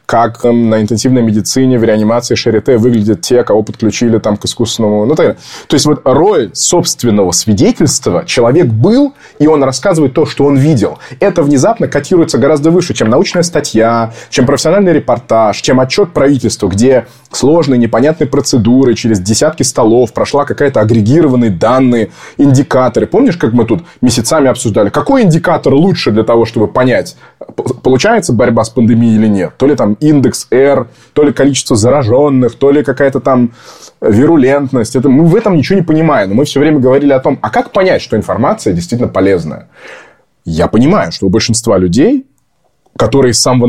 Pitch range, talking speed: 110-150 Hz, 165 wpm